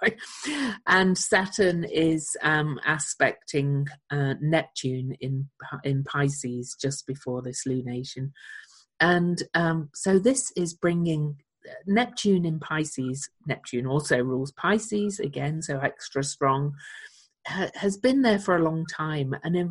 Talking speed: 120 wpm